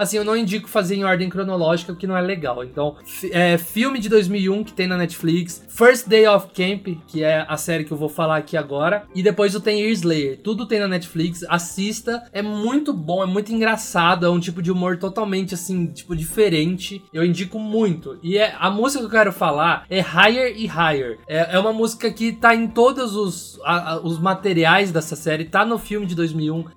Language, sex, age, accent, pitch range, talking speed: Portuguese, male, 20-39, Brazilian, 170-215 Hz, 215 wpm